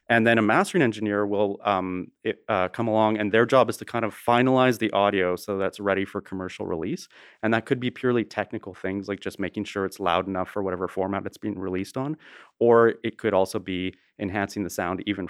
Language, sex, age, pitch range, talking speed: English, male, 30-49, 95-115 Hz, 220 wpm